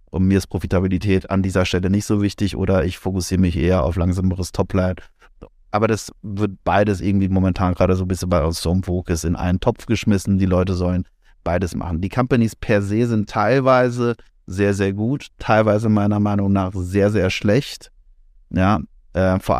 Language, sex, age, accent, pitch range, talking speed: English, male, 30-49, German, 95-110 Hz, 185 wpm